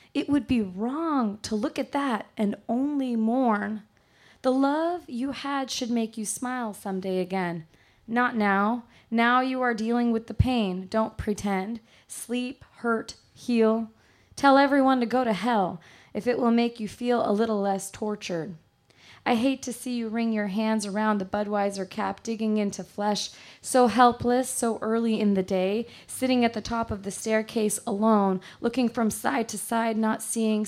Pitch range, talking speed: 205-245 Hz, 170 wpm